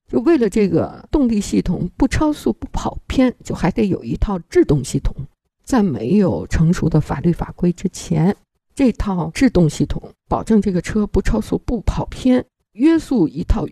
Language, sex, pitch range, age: Chinese, female, 155-230 Hz, 50-69